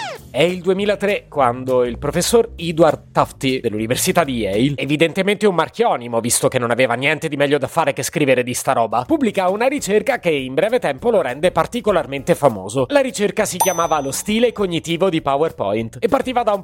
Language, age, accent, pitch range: Italian, 30-49, native, 140-200 Hz